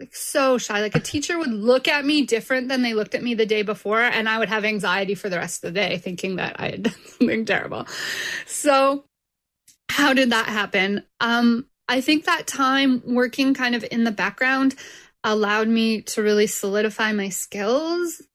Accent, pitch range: American, 210-260 Hz